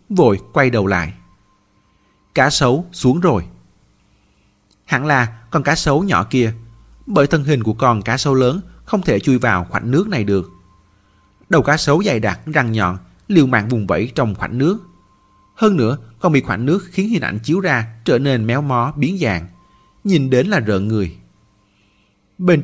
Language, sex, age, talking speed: Vietnamese, male, 30-49, 180 wpm